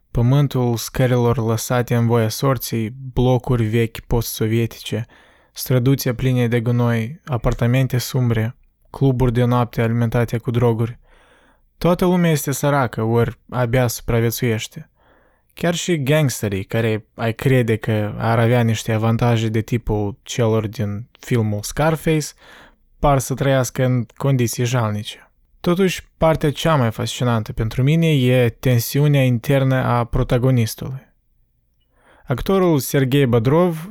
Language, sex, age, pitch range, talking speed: Romanian, male, 20-39, 115-135 Hz, 115 wpm